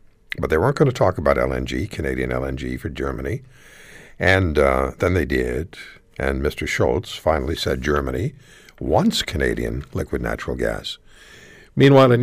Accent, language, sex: American, English, male